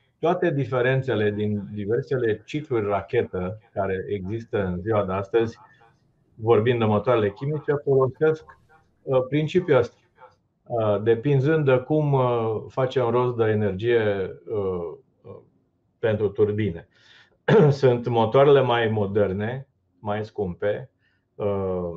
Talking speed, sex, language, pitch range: 95 wpm, male, Romanian, 100-130 Hz